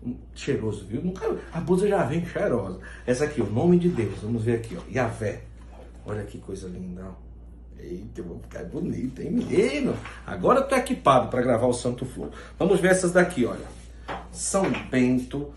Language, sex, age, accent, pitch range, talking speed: Portuguese, male, 60-79, Brazilian, 100-155 Hz, 180 wpm